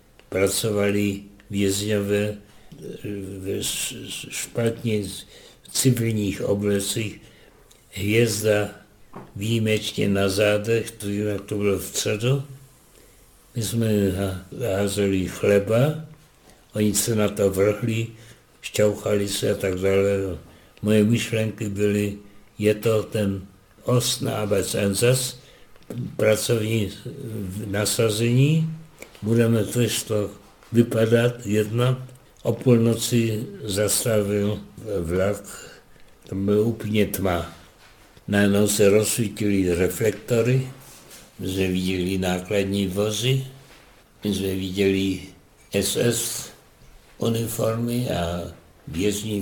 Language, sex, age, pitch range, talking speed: Czech, male, 60-79, 100-115 Hz, 85 wpm